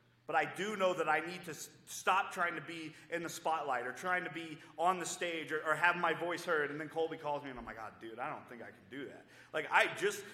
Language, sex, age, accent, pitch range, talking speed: English, male, 30-49, American, 135-190 Hz, 280 wpm